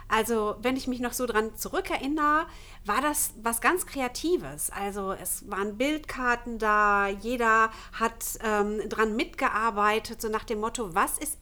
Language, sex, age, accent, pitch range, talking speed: German, female, 50-69, German, 220-290 Hz, 150 wpm